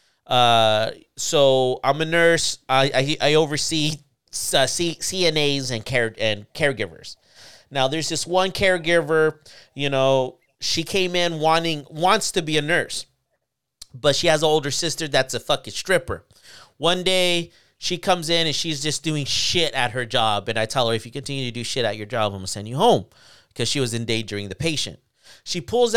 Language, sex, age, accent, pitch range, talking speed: English, male, 30-49, American, 135-180 Hz, 185 wpm